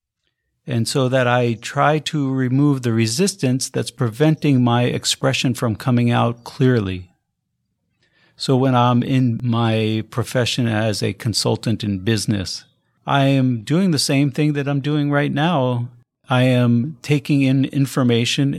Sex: male